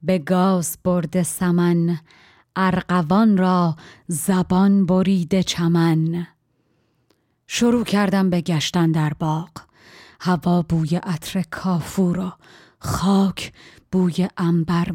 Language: Persian